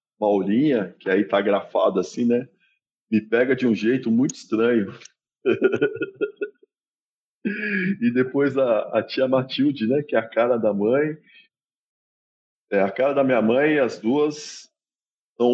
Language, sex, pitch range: Portuguese, male, 100-150 Hz